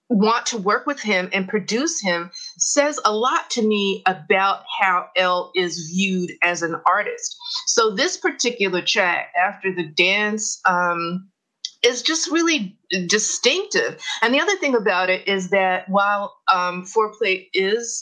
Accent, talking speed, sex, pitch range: American, 155 wpm, female, 185-235 Hz